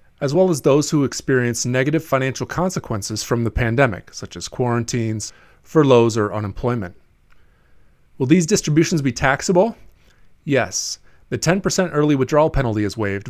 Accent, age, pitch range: American, 30-49, 110-145 Hz